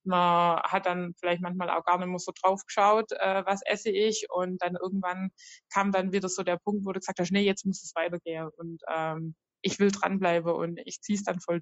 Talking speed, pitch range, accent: 235 wpm, 175-215 Hz, German